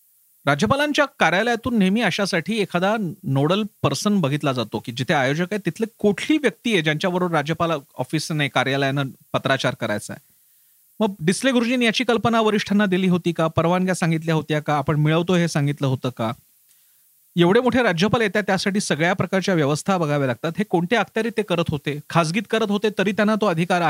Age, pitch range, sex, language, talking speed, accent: 40-59, 150-210 Hz, male, Marathi, 130 wpm, native